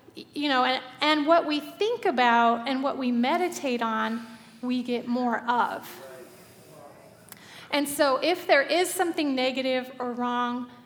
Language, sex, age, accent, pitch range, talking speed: English, female, 30-49, American, 235-295 Hz, 145 wpm